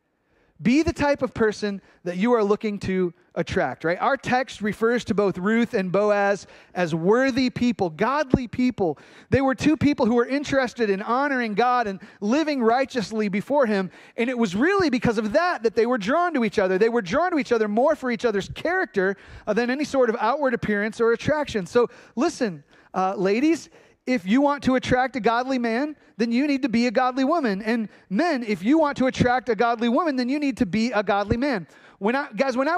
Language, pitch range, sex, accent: English, 205-260 Hz, male, American